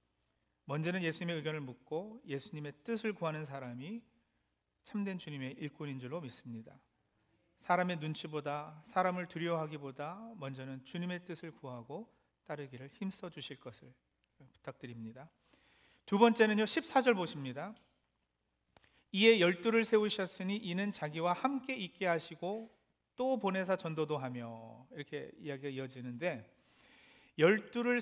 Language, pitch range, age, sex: Korean, 140-220 Hz, 40-59, male